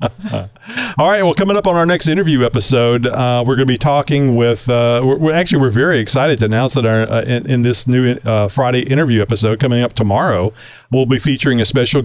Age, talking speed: 40-59, 220 wpm